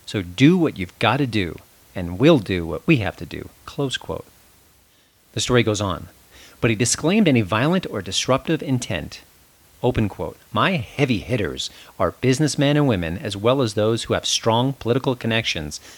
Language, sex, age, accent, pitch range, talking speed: English, male, 40-59, American, 95-145 Hz, 175 wpm